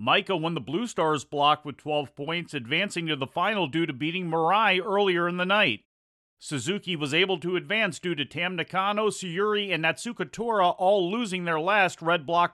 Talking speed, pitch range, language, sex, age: 190 wpm, 150-190 Hz, English, male, 40-59